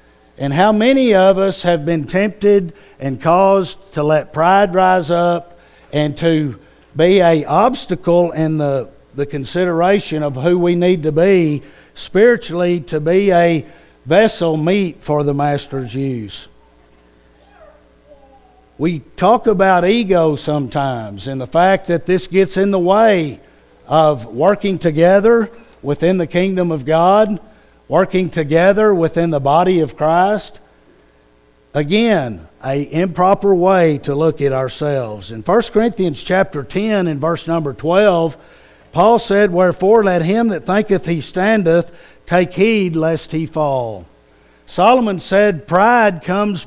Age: 60-79